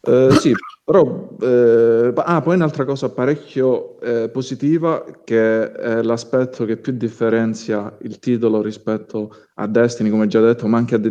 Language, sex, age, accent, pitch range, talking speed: Italian, male, 30-49, native, 105-115 Hz, 155 wpm